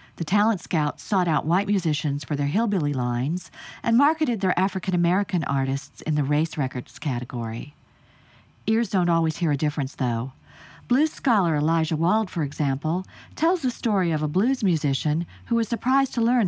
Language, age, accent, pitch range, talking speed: English, 50-69, American, 145-200 Hz, 170 wpm